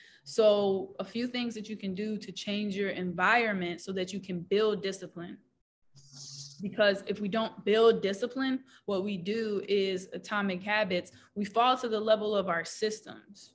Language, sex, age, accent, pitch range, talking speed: English, female, 20-39, American, 200-240 Hz, 170 wpm